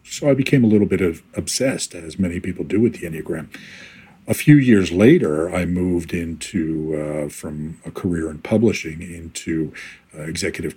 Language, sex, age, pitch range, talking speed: English, male, 50-69, 80-105 Hz, 175 wpm